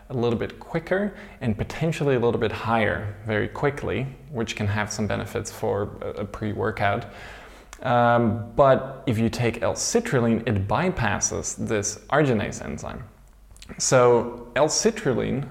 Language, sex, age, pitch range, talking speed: English, male, 20-39, 105-125 Hz, 130 wpm